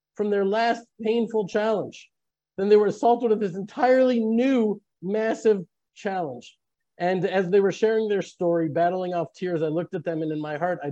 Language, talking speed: English, 185 wpm